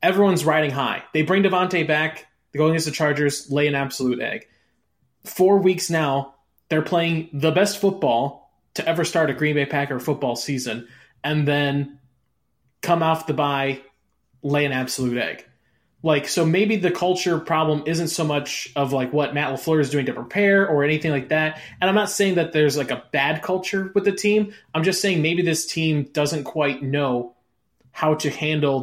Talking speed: 185 wpm